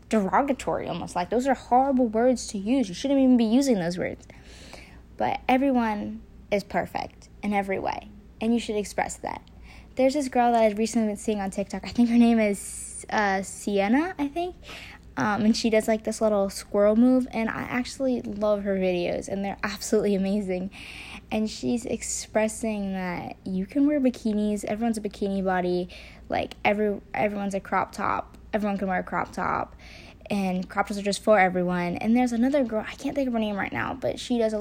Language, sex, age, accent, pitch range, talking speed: English, female, 10-29, American, 200-250 Hz, 195 wpm